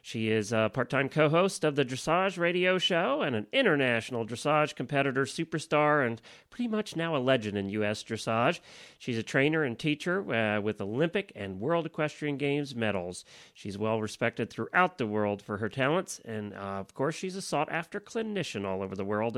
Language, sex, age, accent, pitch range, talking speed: English, male, 40-59, American, 110-160 Hz, 190 wpm